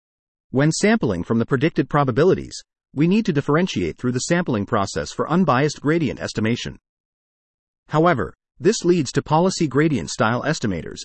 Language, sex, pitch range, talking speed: English, male, 120-165 Hz, 140 wpm